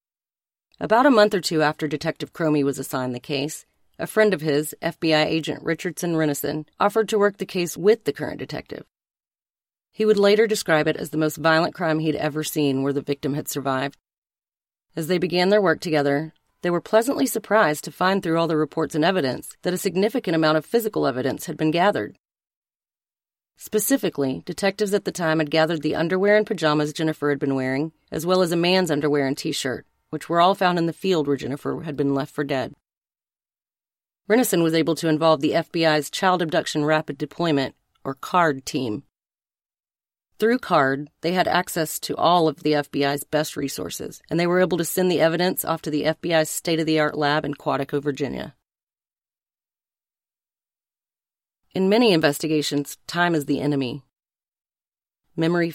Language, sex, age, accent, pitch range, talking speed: English, female, 40-59, American, 145-180 Hz, 175 wpm